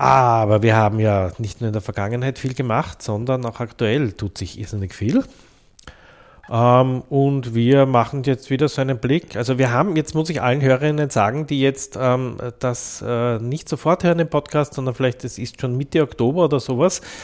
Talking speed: 180 wpm